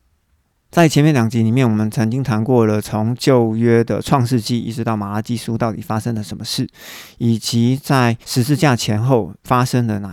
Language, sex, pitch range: Chinese, male, 110-125 Hz